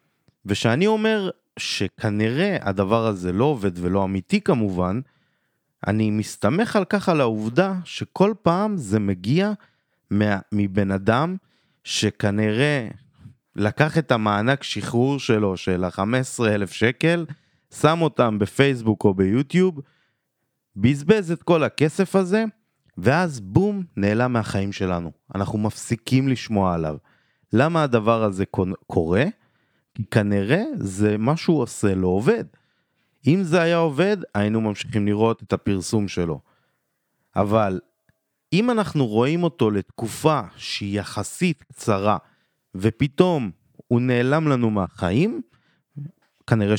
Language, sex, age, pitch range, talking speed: Hebrew, male, 30-49, 100-160 Hz, 115 wpm